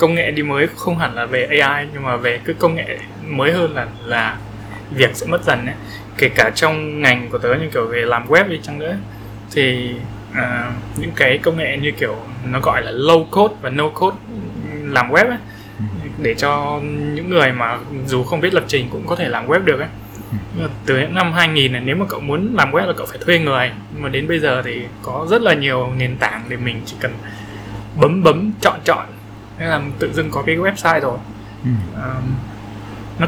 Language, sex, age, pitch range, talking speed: Vietnamese, male, 20-39, 105-155 Hz, 220 wpm